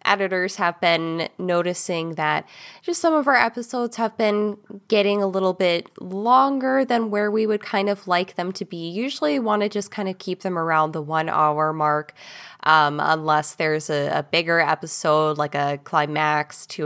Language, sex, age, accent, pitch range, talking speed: English, female, 10-29, American, 160-220 Hz, 185 wpm